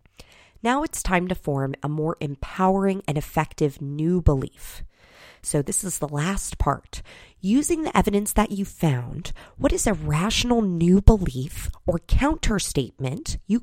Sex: female